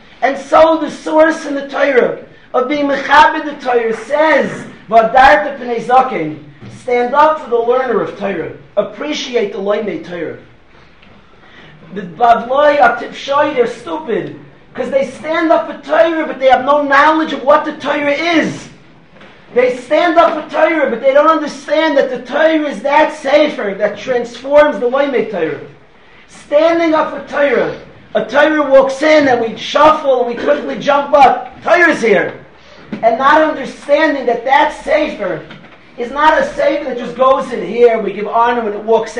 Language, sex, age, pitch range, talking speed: English, male, 40-59, 240-300 Hz, 160 wpm